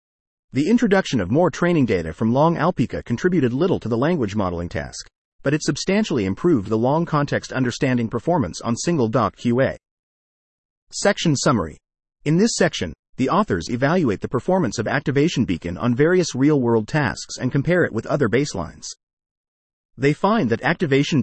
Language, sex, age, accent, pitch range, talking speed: English, male, 30-49, American, 110-160 Hz, 160 wpm